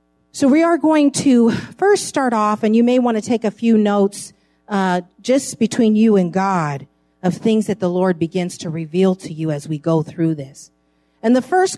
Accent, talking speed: American, 210 wpm